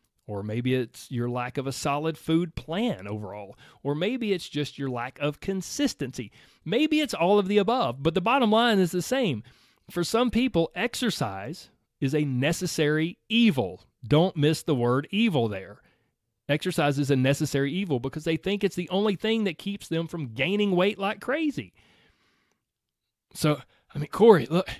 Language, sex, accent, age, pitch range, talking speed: English, male, American, 30-49, 145-220 Hz, 170 wpm